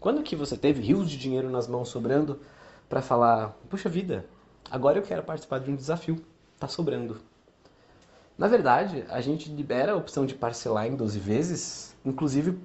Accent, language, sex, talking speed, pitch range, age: Brazilian, Portuguese, male, 170 wpm, 120-155 Hz, 20-39